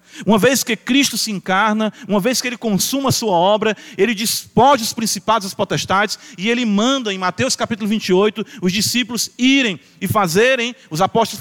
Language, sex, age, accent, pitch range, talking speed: Portuguese, male, 40-59, Brazilian, 205-250 Hz, 185 wpm